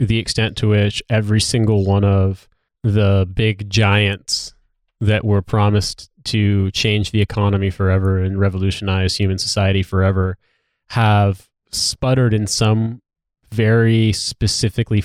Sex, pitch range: male, 95-115 Hz